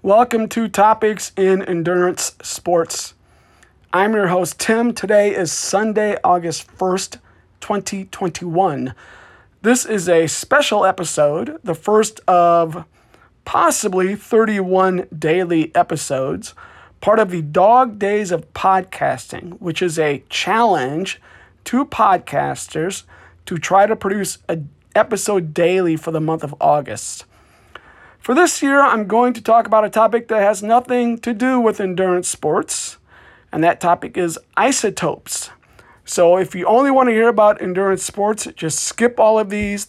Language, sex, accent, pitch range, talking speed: English, male, American, 170-215 Hz, 140 wpm